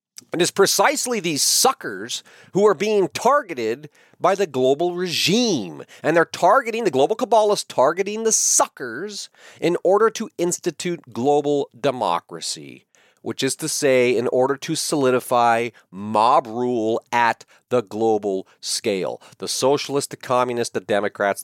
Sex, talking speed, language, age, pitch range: male, 135 wpm, English, 40-59, 140-225 Hz